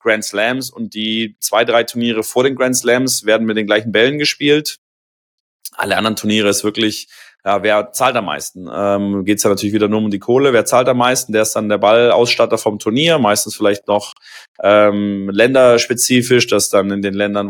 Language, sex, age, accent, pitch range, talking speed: German, male, 20-39, German, 105-120 Hz, 200 wpm